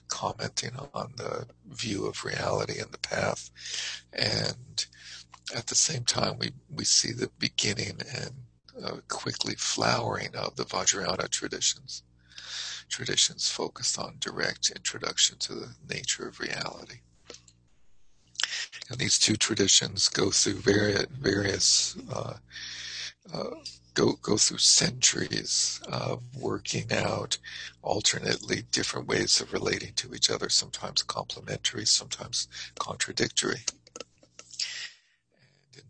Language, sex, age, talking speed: English, male, 60-79, 110 wpm